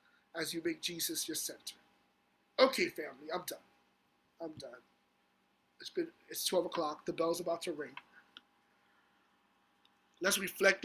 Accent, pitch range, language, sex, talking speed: American, 165-195 Hz, English, male, 135 wpm